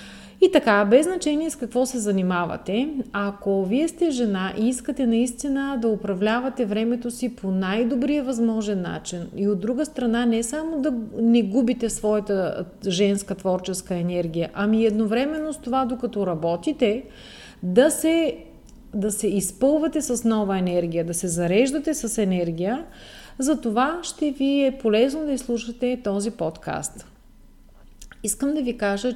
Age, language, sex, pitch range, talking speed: 40-59, Bulgarian, female, 195-260 Hz, 140 wpm